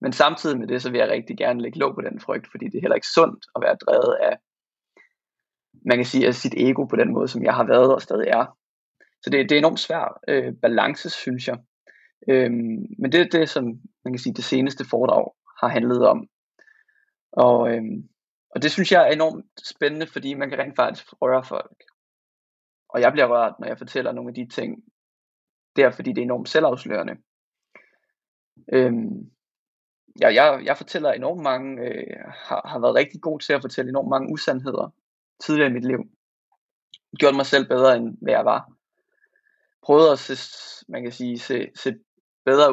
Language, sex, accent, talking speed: English, male, Danish, 195 wpm